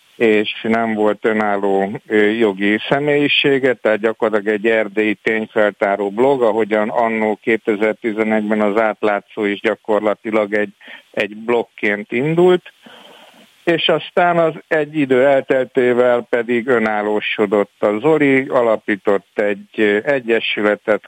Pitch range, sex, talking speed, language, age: 105-120 Hz, male, 100 wpm, Hungarian, 60-79